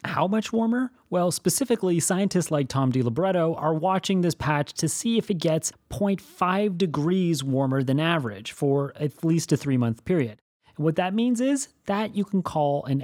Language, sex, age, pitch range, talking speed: English, male, 30-49, 120-175 Hz, 180 wpm